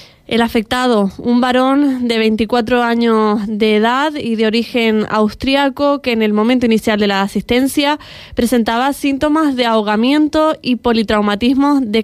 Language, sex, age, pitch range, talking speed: Spanish, female, 20-39, 215-255 Hz, 140 wpm